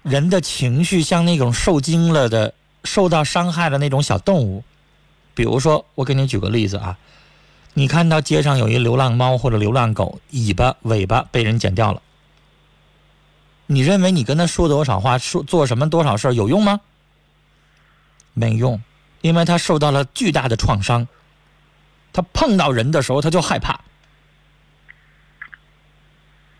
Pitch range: 125-175 Hz